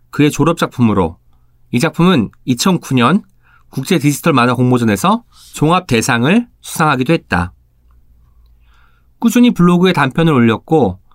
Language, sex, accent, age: Korean, male, native, 30-49